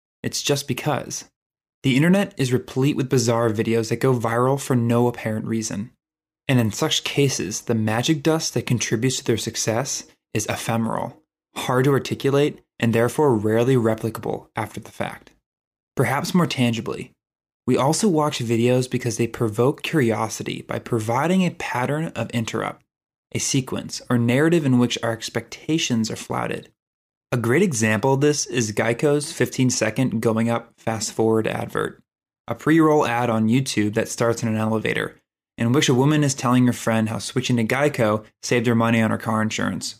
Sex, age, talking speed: male, 20-39, 165 wpm